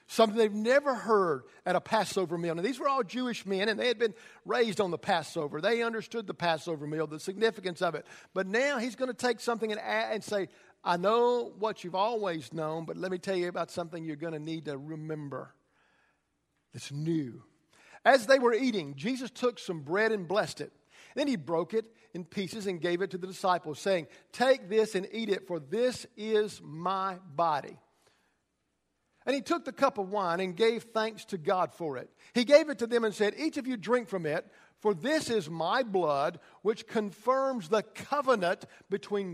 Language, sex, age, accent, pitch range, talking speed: English, male, 50-69, American, 175-230 Hz, 200 wpm